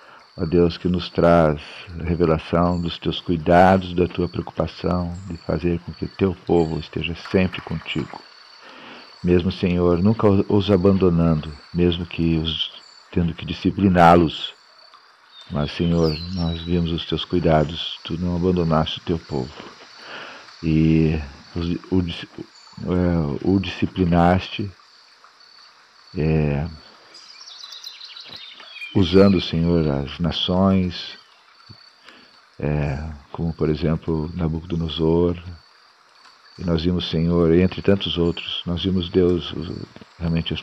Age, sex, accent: 50-69, male, Brazilian